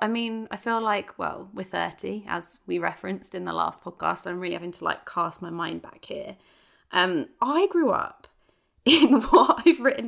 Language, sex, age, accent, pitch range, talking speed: English, female, 20-39, British, 180-250 Hz, 200 wpm